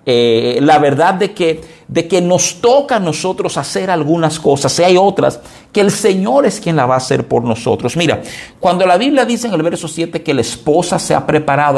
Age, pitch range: 50-69, 135-185 Hz